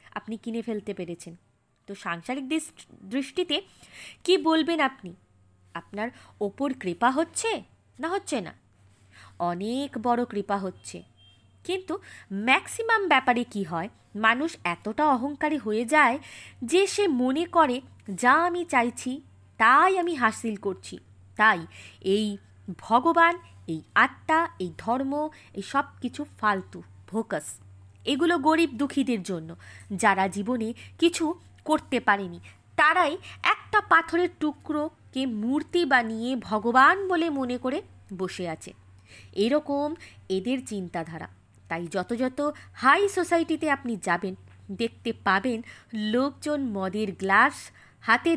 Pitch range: 185-295 Hz